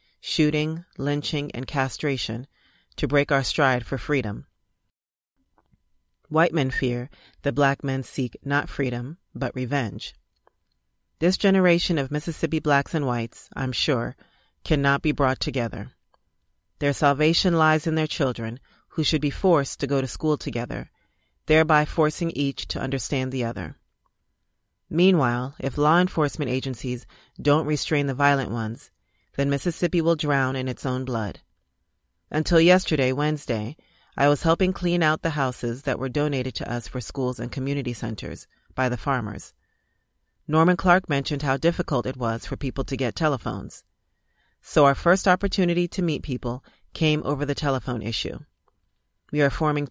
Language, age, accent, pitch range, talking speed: English, 40-59, American, 125-155 Hz, 150 wpm